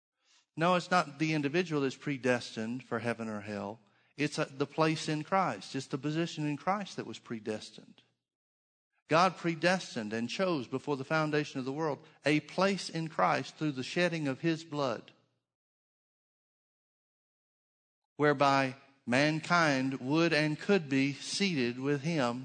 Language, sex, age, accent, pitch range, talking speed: English, male, 50-69, American, 120-150 Hz, 140 wpm